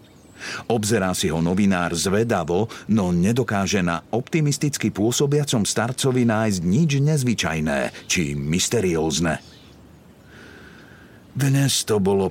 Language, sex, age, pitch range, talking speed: Slovak, male, 50-69, 90-125 Hz, 95 wpm